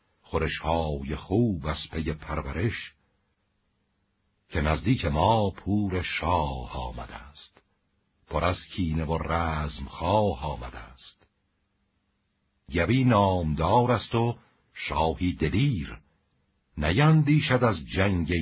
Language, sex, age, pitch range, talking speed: Persian, male, 60-79, 80-105 Hz, 100 wpm